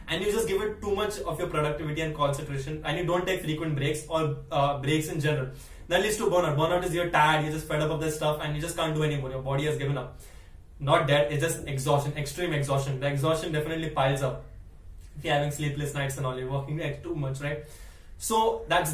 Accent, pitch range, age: Indian, 145-175 Hz, 20-39